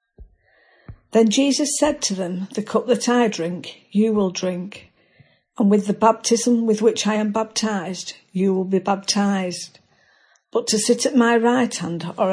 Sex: female